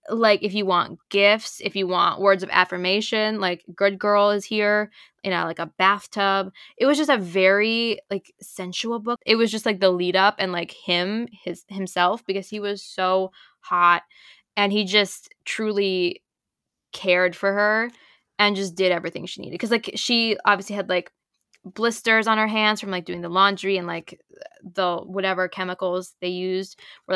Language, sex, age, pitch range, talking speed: English, female, 10-29, 180-210 Hz, 180 wpm